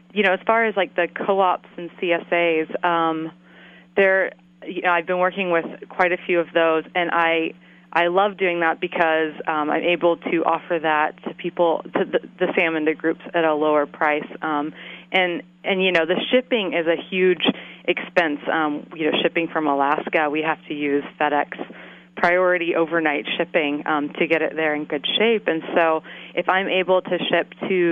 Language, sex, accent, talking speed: English, female, American, 190 wpm